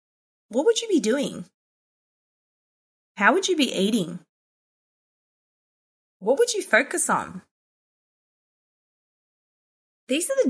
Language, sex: English, female